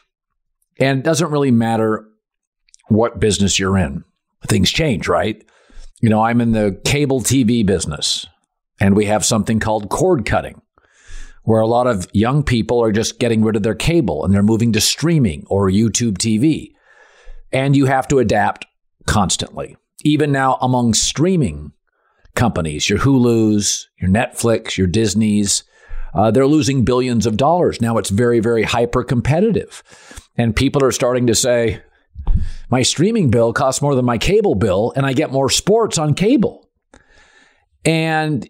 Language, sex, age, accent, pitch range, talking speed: English, male, 50-69, American, 105-135 Hz, 155 wpm